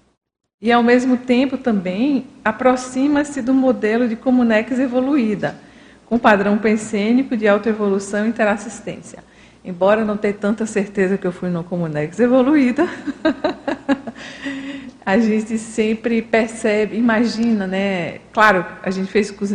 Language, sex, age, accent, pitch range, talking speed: Portuguese, female, 50-69, Brazilian, 185-225 Hz, 125 wpm